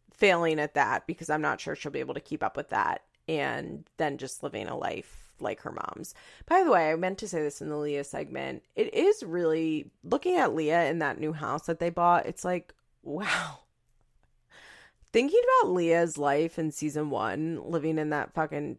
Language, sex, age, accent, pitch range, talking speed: English, female, 30-49, American, 150-210 Hz, 200 wpm